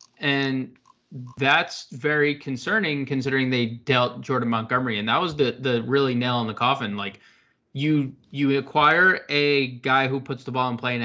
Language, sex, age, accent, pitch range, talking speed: English, male, 20-39, American, 120-155 Hz, 175 wpm